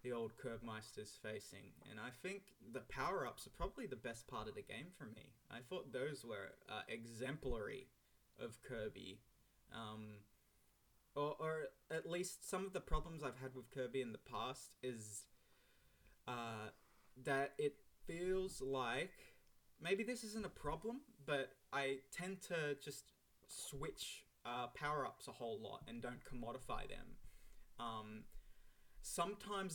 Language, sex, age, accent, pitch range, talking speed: English, male, 20-39, Australian, 115-145 Hz, 145 wpm